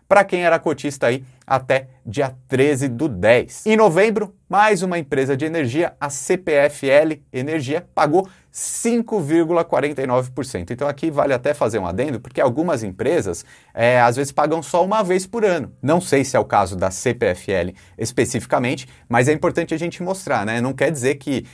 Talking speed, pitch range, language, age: 165 wpm, 125-170 Hz, English, 30-49